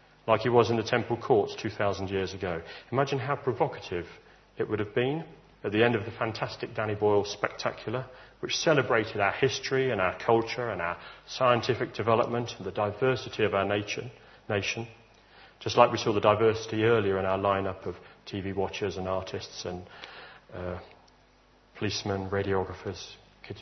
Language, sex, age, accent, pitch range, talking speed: English, male, 40-59, British, 95-125 Hz, 160 wpm